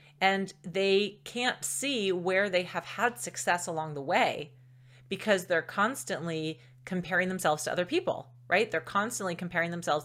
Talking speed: 150 wpm